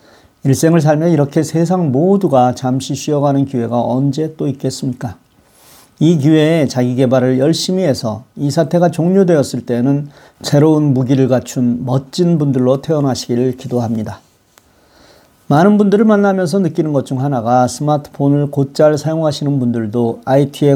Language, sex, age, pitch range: Korean, male, 40-59, 130-155 Hz